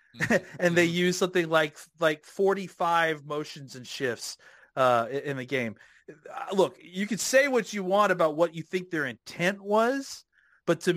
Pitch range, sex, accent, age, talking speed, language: 140-180 Hz, male, American, 40-59, 170 wpm, English